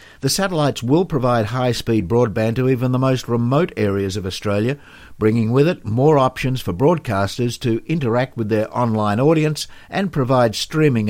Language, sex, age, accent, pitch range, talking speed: English, male, 60-79, Australian, 105-135 Hz, 160 wpm